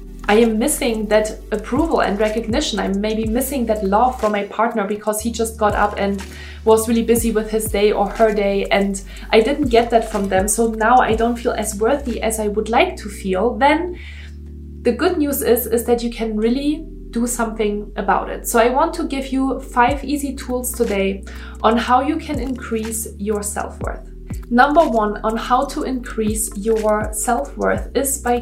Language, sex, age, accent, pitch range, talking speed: English, female, 20-39, German, 215-250 Hz, 190 wpm